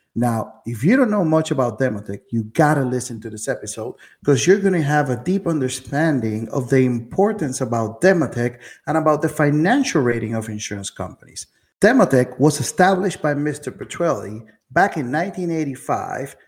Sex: male